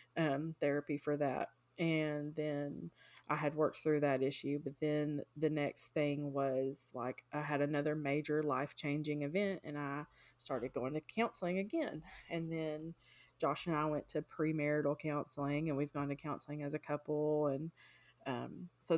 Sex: female